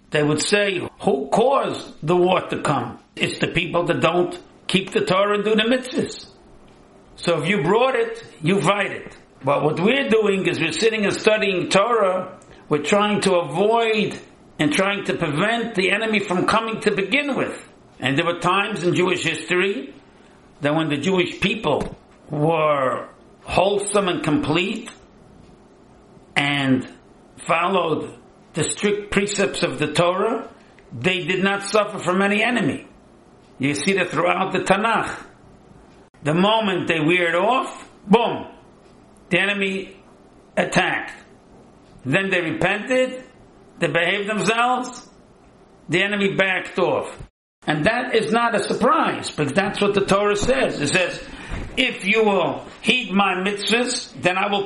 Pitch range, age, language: 170-210 Hz, 60-79, English